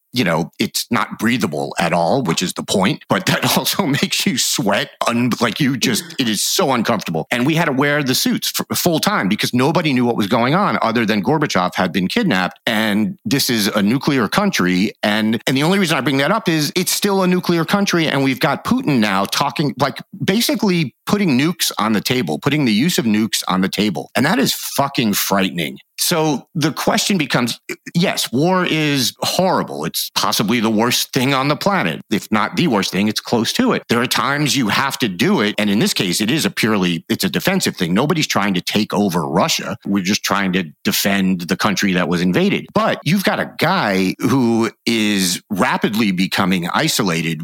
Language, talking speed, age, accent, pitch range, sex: English, 210 wpm, 40-59, American, 100-155 Hz, male